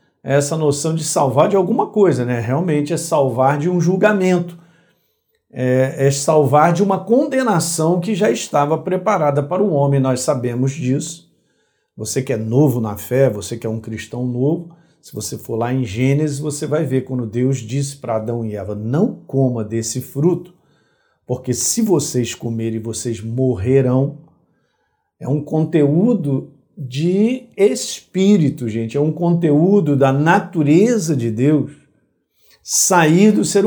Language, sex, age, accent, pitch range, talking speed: Portuguese, male, 50-69, Brazilian, 130-175 Hz, 150 wpm